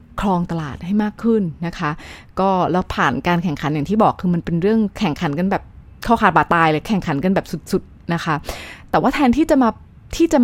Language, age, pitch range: Thai, 20-39, 165-215 Hz